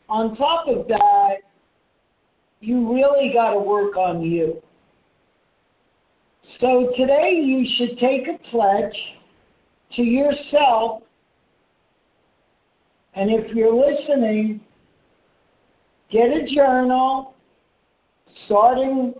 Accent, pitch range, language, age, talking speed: American, 225-280 Hz, English, 50-69, 90 wpm